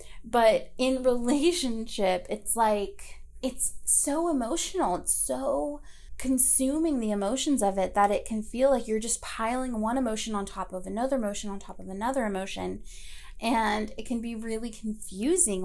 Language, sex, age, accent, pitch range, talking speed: English, female, 20-39, American, 215-270 Hz, 155 wpm